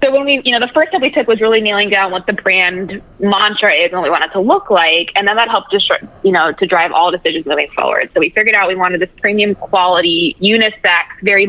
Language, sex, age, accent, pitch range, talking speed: English, female, 20-39, American, 180-225 Hz, 255 wpm